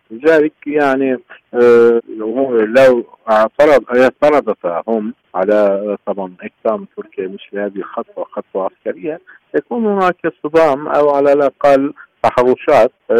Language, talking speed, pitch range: Arabic, 100 wpm, 105-145 Hz